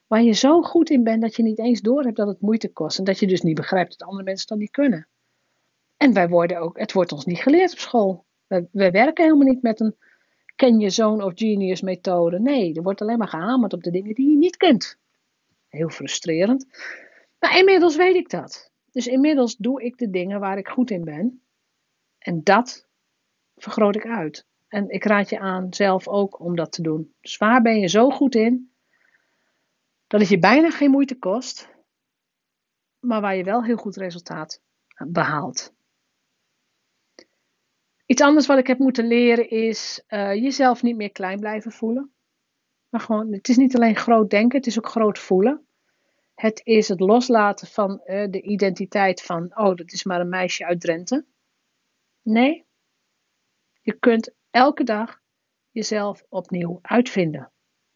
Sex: female